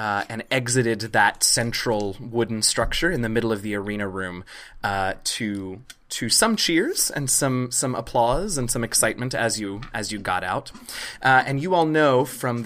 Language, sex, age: English, male, 20-39